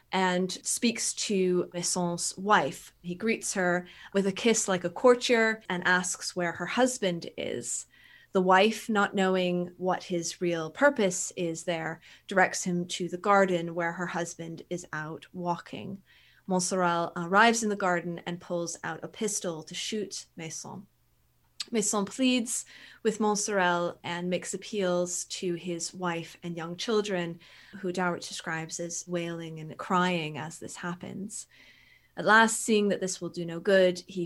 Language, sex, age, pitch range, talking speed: English, female, 20-39, 170-200 Hz, 150 wpm